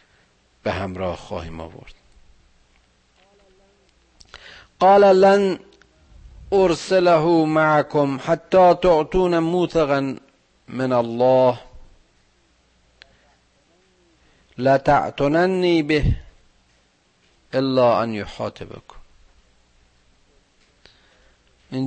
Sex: male